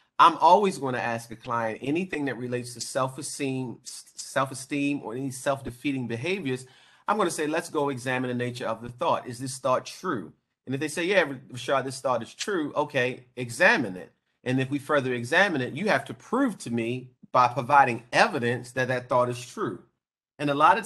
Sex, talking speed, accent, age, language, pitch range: male, 200 wpm, American, 30-49, English, 125-145 Hz